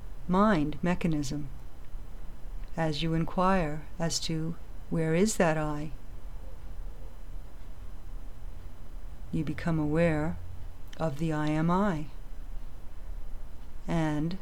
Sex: female